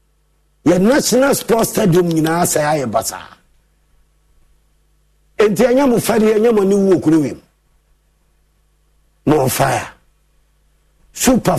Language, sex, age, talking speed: English, male, 50-69, 100 wpm